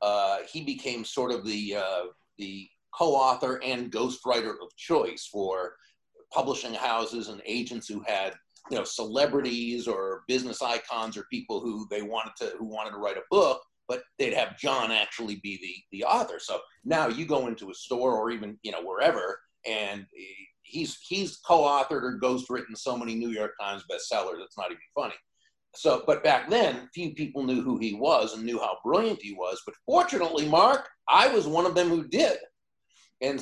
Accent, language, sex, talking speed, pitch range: American, English, male, 185 wpm, 110-140 Hz